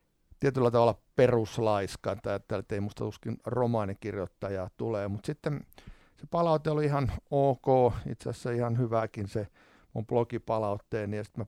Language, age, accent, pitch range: Finnish, 50-69, native, 100-125 Hz